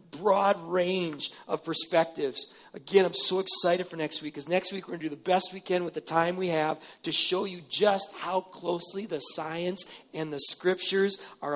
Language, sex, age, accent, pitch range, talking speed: English, male, 40-59, American, 150-185 Hz, 200 wpm